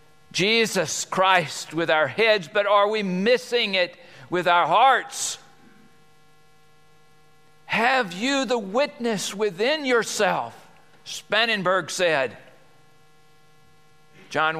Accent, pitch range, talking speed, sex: American, 155-175 Hz, 90 wpm, male